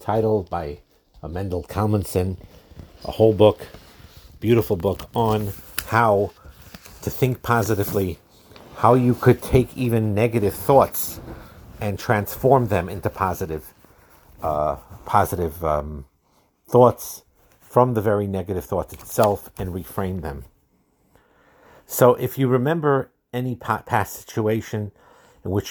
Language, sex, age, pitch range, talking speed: English, male, 50-69, 90-110 Hz, 110 wpm